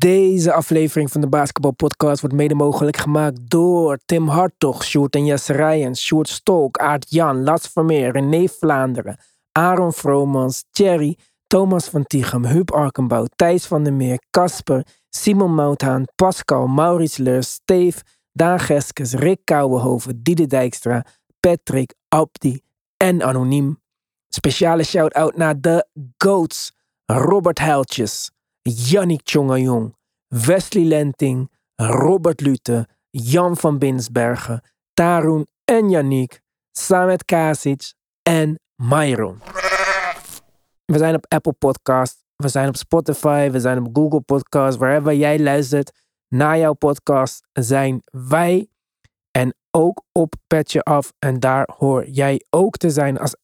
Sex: male